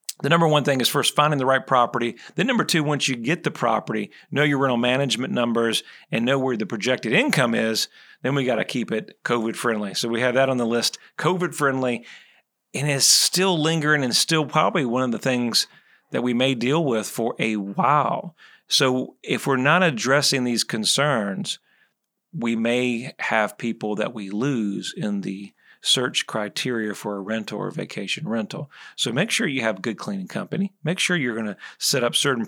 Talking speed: 195 wpm